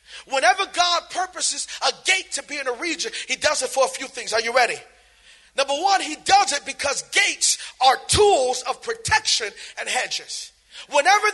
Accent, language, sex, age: American, English, male, 40-59